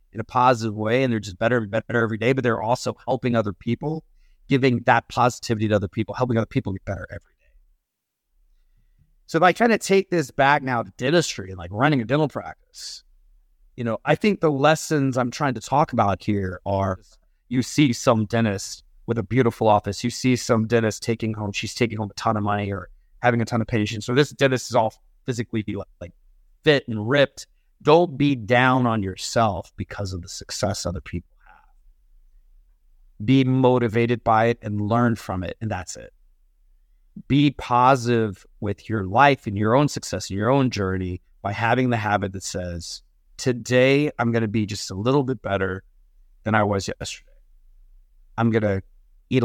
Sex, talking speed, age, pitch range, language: male, 190 wpm, 30-49, 100-130 Hz, English